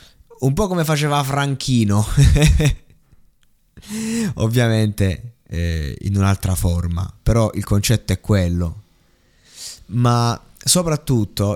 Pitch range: 100-125 Hz